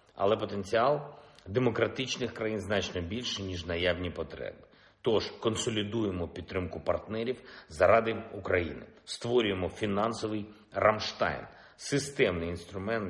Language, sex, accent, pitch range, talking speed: Ukrainian, male, native, 90-115 Hz, 100 wpm